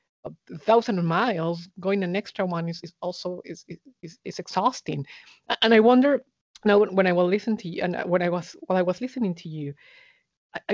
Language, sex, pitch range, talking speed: English, female, 165-205 Hz, 195 wpm